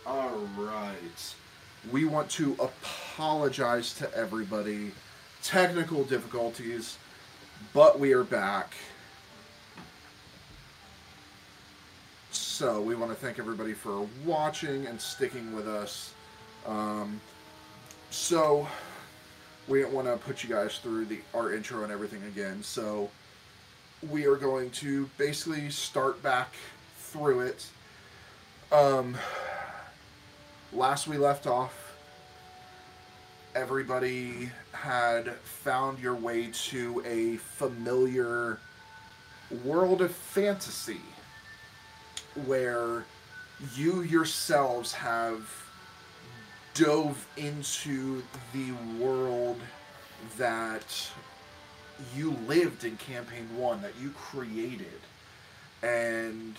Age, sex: 20-39, male